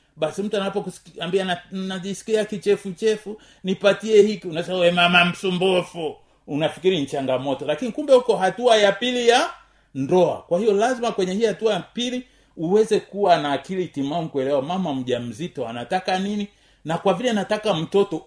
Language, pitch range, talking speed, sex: Swahili, 150-210 Hz, 150 wpm, male